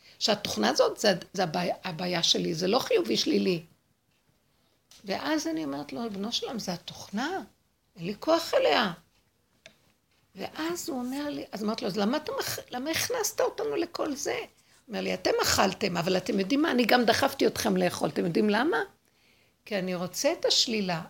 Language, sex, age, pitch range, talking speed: Hebrew, female, 60-79, 215-345 Hz, 170 wpm